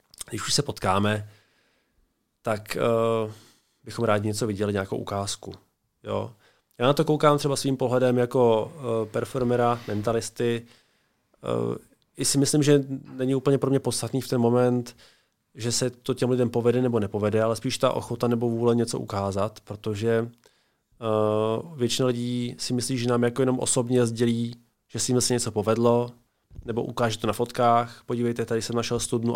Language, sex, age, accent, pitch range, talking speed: Czech, male, 20-39, native, 110-125 Hz, 165 wpm